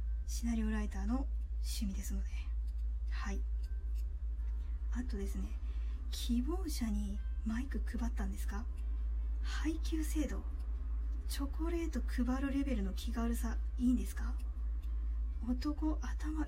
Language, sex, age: Japanese, female, 20-39